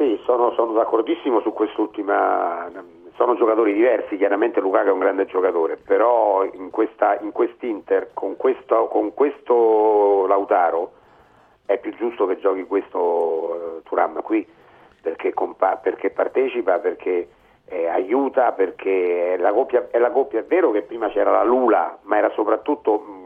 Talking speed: 135 wpm